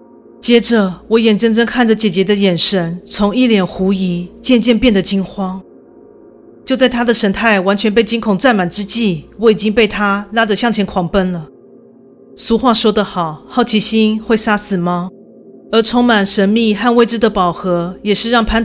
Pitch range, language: 195-235 Hz, Chinese